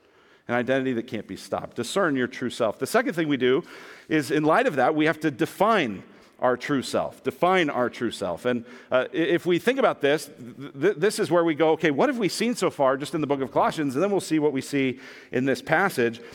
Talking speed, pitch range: 240 wpm, 155-215 Hz